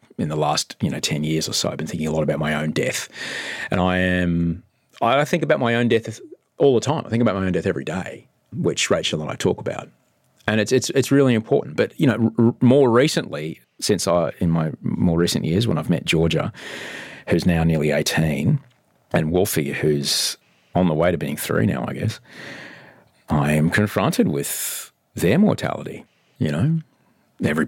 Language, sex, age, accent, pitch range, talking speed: English, male, 30-49, Australian, 80-130 Hz, 200 wpm